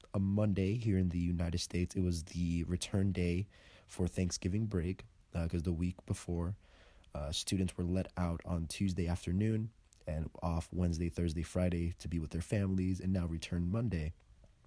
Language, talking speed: English, 170 wpm